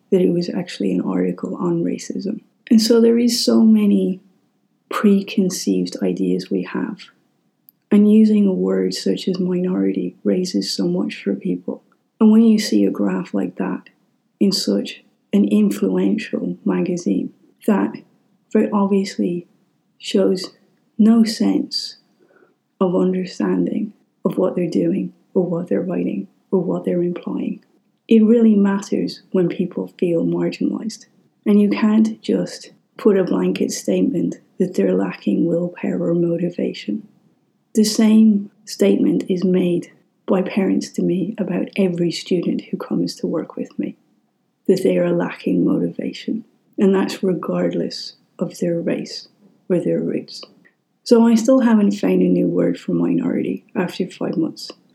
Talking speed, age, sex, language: 140 wpm, 30-49, female, English